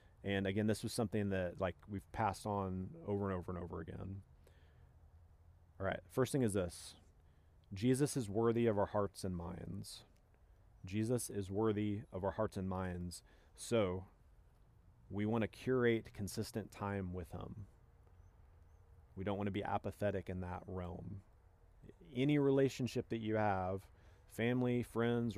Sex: male